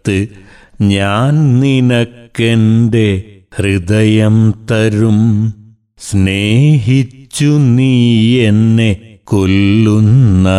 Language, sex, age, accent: Malayalam, male, 60-79, native